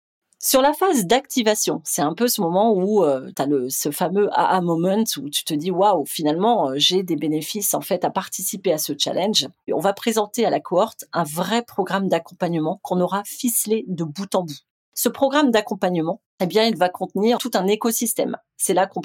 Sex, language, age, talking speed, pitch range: female, French, 30-49, 215 wpm, 180-255 Hz